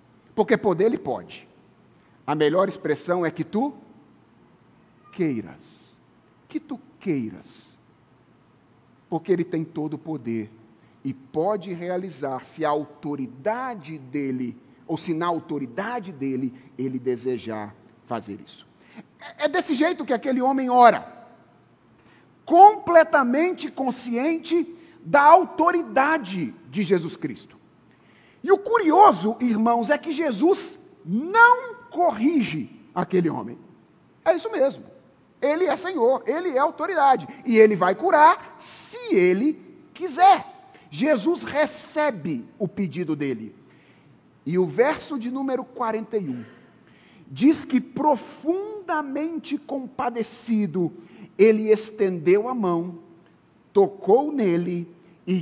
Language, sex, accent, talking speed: Portuguese, male, Brazilian, 105 wpm